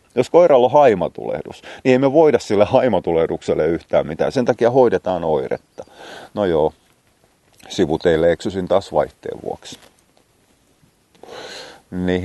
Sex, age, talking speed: male, 30-49, 120 wpm